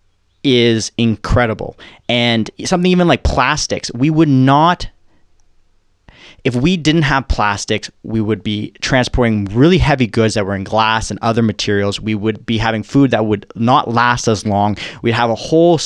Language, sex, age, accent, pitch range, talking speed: English, male, 20-39, American, 105-130 Hz, 165 wpm